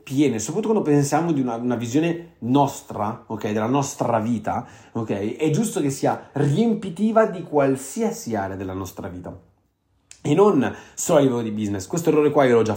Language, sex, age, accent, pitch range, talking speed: Italian, male, 30-49, native, 110-155 Hz, 180 wpm